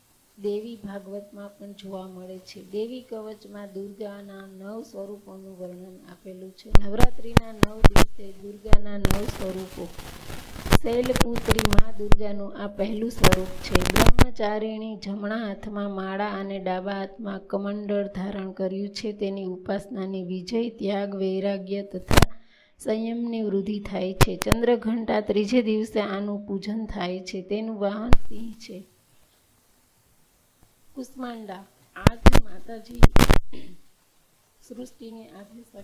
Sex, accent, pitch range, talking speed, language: female, native, 195-220 Hz, 80 wpm, Gujarati